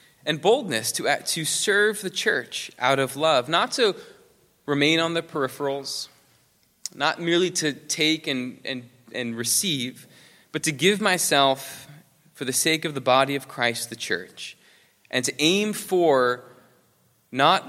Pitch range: 115-150 Hz